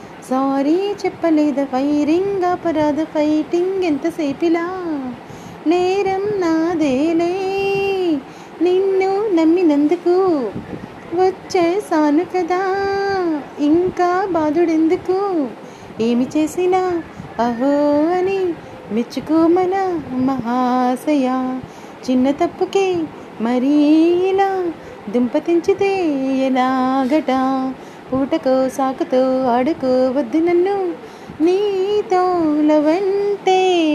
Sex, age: female, 30-49